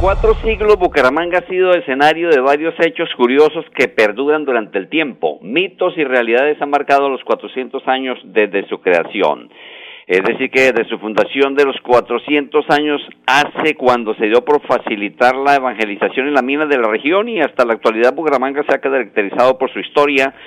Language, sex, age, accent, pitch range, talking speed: Spanish, male, 50-69, Mexican, 120-150 Hz, 180 wpm